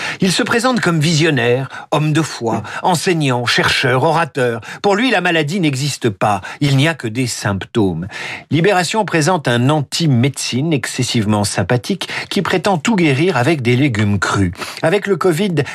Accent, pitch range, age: French, 130-175 Hz, 50-69